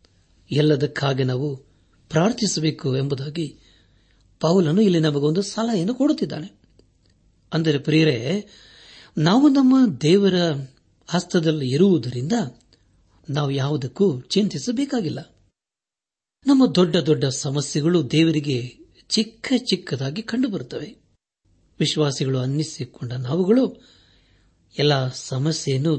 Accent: native